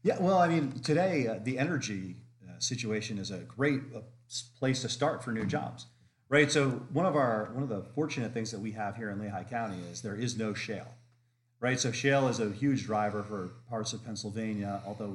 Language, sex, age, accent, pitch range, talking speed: English, male, 40-59, American, 105-125 Hz, 215 wpm